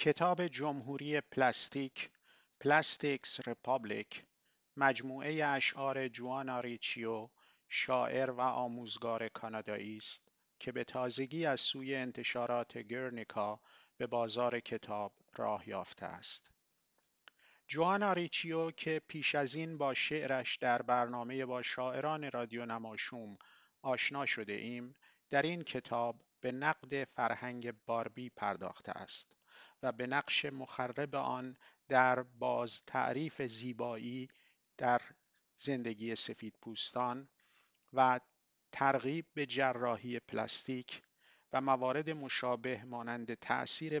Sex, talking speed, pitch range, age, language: male, 105 wpm, 115-135 Hz, 50-69, Persian